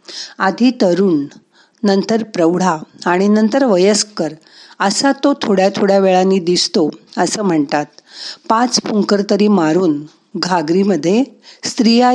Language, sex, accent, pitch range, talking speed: Marathi, female, native, 160-215 Hz, 105 wpm